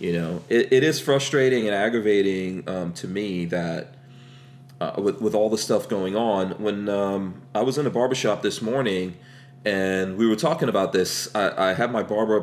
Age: 40-59